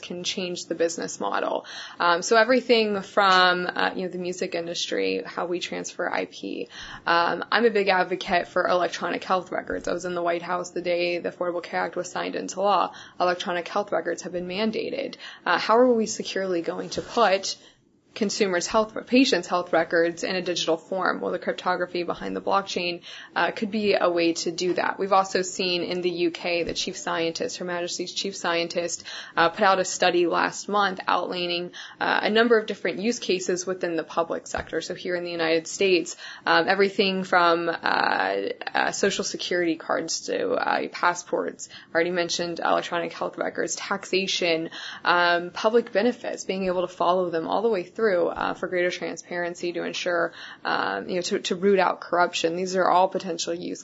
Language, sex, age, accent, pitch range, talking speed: English, female, 20-39, American, 175-195 Hz, 185 wpm